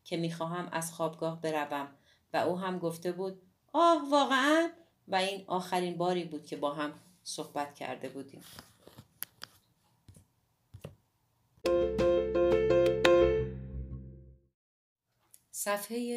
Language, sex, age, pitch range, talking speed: Persian, female, 30-49, 155-200 Hz, 95 wpm